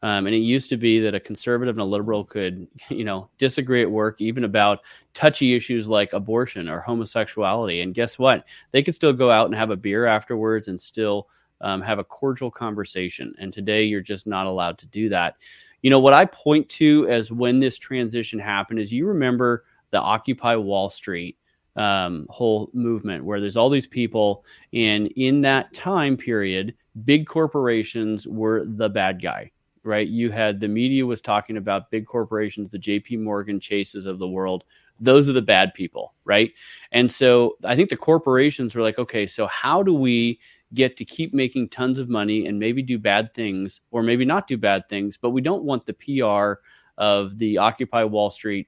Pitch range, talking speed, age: 105-125 Hz, 195 wpm, 30-49